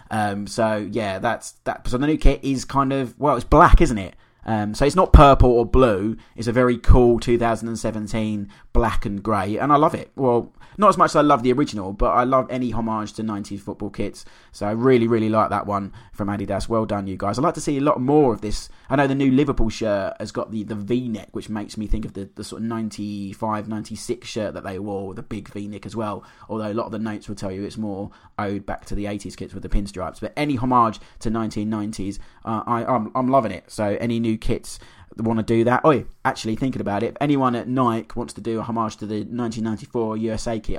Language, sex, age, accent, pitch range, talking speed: English, male, 20-39, British, 105-125 Hz, 250 wpm